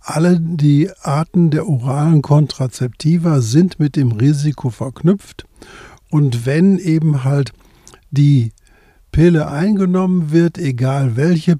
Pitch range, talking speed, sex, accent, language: 135-160 Hz, 110 wpm, male, German, German